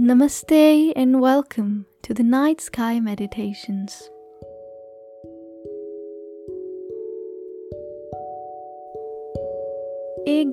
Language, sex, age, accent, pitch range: Hindi, female, 10-29, native, 210-280 Hz